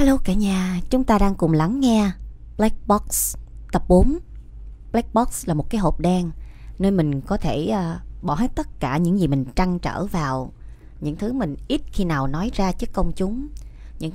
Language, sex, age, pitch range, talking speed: Vietnamese, female, 20-39, 160-220 Hz, 200 wpm